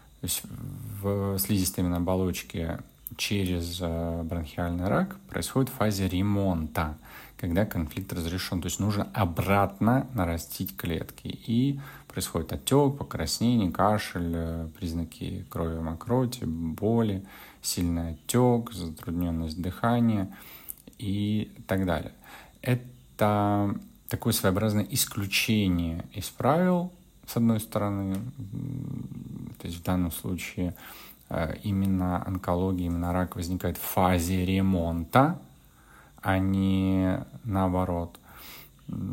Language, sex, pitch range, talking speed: Russian, male, 85-110 Hz, 90 wpm